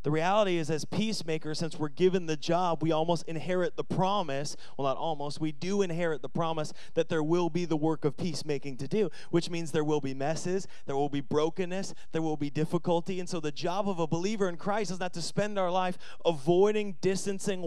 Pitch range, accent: 150-185 Hz, American